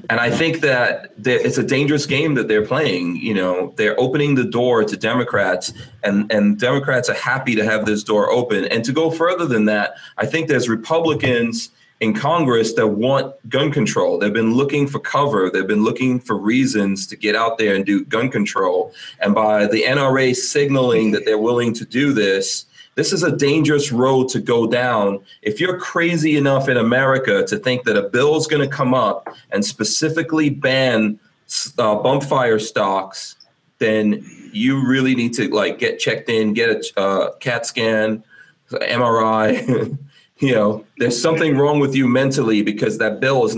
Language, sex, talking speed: English, male, 180 wpm